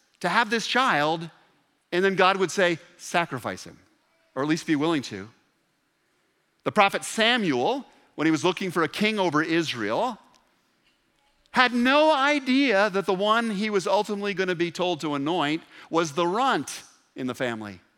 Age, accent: 50-69, American